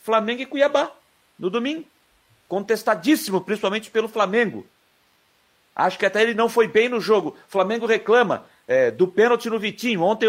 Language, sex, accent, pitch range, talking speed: Portuguese, male, Brazilian, 190-240 Hz, 150 wpm